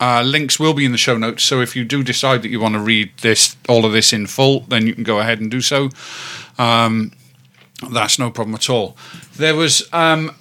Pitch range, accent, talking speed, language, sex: 125-155 Hz, British, 235 wpm, English, male